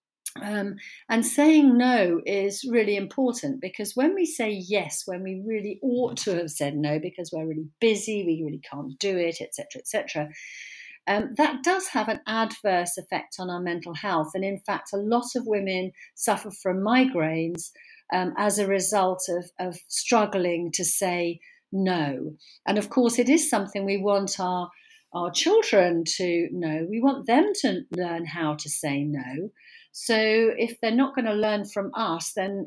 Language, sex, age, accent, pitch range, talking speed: English, female, 50-69, British, 175-235 Hz, 180 wpm